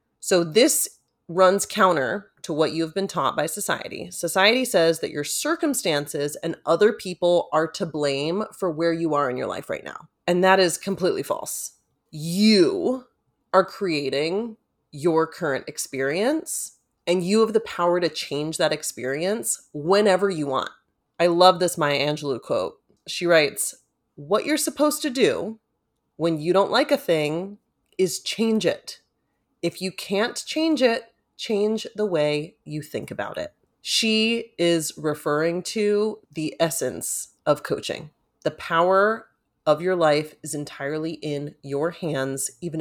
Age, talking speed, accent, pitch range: 30-49, 150 wpm, American, 155-210 Hz